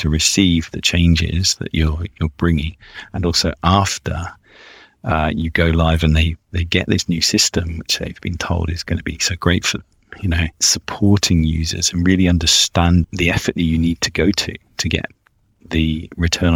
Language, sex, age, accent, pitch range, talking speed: English, male, 40-59, British, 80-95 Hz, 190 wpm